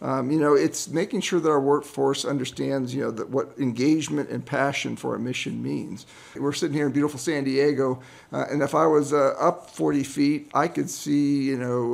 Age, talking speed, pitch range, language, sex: 50-69, 205 wpm, 130-155 Hz, English, male